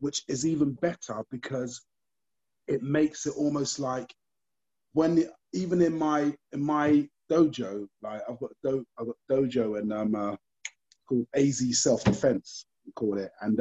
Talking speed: 160 wpm